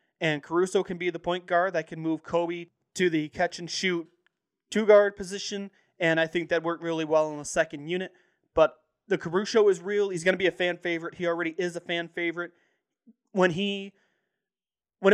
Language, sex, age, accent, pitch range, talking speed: English, male, 20-39, American, 160-185 Hz, 190 wpm